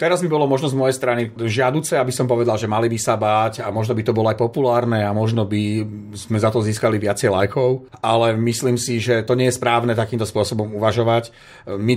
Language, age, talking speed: Slovak, 40-59, 220 wpm